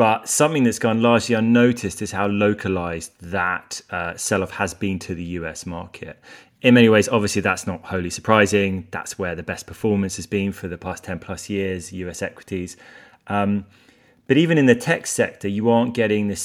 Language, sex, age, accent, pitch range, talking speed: English, male, 20-39, British, 95-110 Hz, 190 wpm